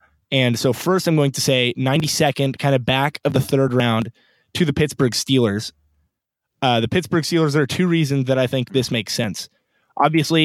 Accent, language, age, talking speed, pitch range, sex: American, English, 20-39, 195 wpm, 125-145 Hz, male